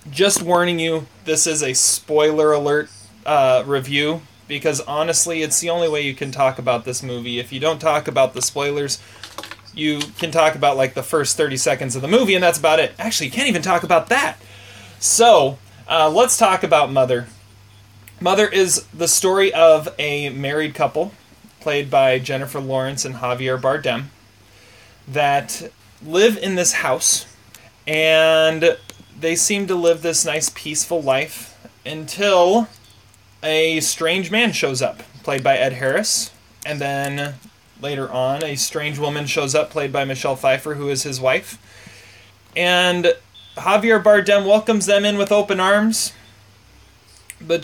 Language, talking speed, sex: English, 155 wpm, male